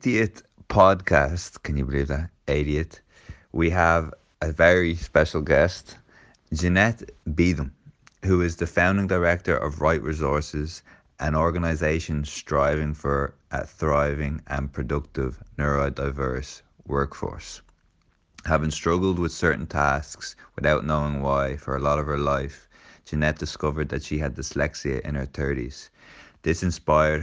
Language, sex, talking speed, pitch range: English, male, 130 wpm, 70-80 Hz